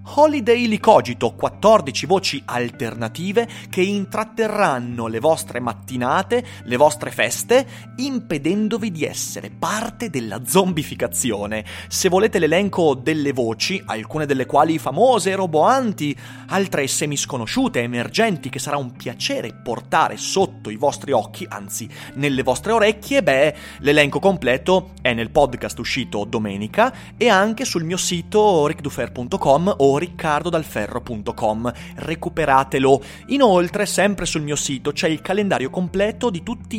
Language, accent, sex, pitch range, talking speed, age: Italian, native, male, 125-195 Hz, 120 wpm, 30-49